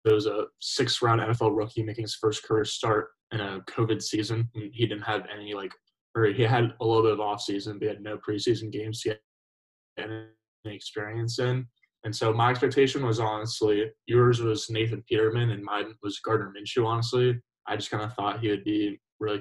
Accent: American